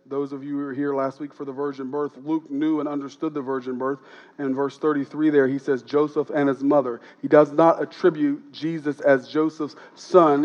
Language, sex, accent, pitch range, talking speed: English, male, American, 135-160 Hz, 215 wpm